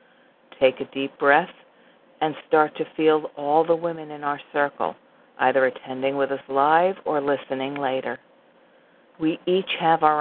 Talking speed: 155 wpm